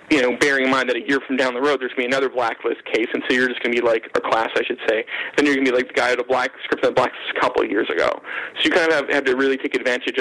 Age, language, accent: 30-49, English, American